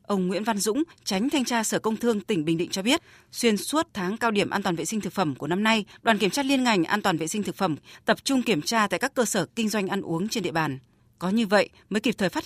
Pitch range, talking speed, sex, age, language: 180-230 Hz, 300 wpm, female, 20-39, Vietnamese